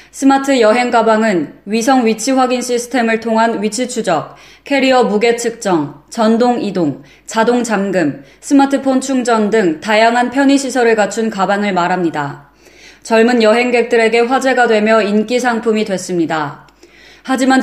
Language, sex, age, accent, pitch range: Korean, female, 20-39, native, 205-245 Hz